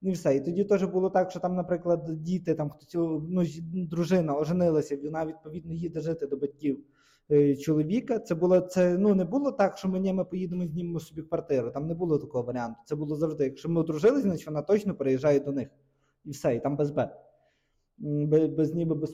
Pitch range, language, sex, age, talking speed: 145-180 Hz, Ukrainian, male, 20-39, 205 wpm